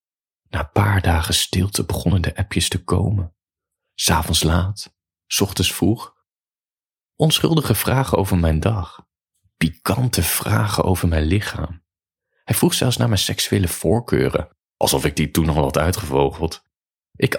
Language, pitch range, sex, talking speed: Dutch, 85-115 Hz, male, 135 wpm